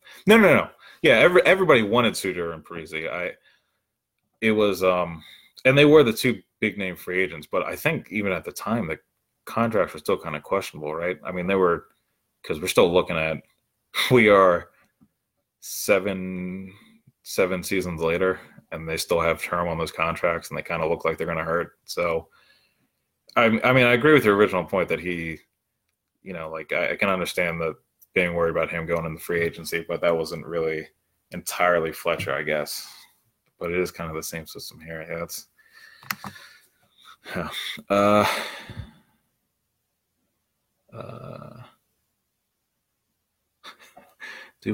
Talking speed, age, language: 160 wpm, 20-39, English